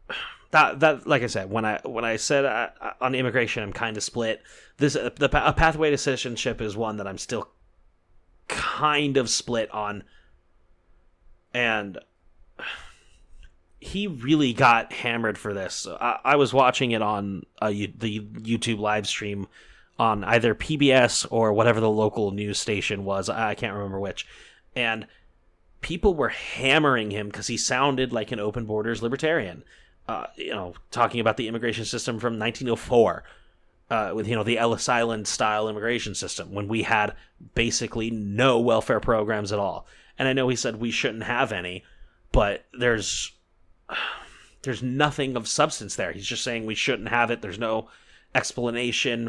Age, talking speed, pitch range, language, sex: 30-49, 160 wpm, 105-120 Hz, English, male